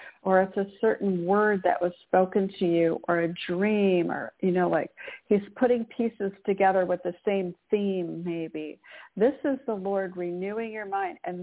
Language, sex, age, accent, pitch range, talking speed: English, female, 50-69, American, 185-220 Hz, 180 wpm